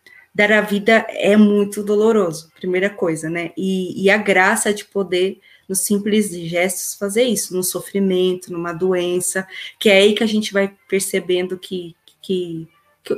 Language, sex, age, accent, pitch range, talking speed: Portuguese, female, 20-39, Brazilian, 185-215 Hz, 160 wpm